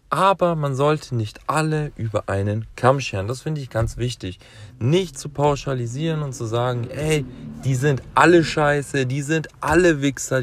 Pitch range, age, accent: 125-170 Hz, 40-59, German